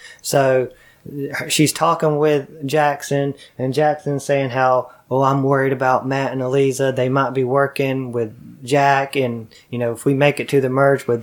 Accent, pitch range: American, 130-150 Hz